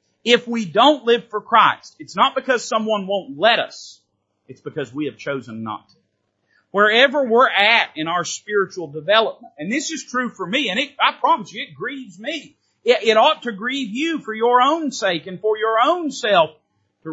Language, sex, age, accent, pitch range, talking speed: English, male, 40-59, American, 145-235 Hz, 200 wpm